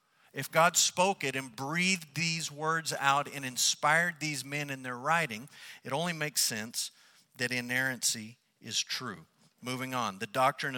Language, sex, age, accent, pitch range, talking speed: English, male, 50-69, American, 135-170 Hz, 155 wpm